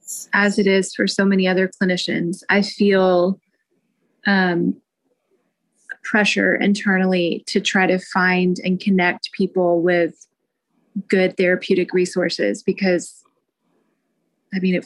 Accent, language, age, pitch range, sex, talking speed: American, English, 20-39, 185-210 Hz, female, 115 wpm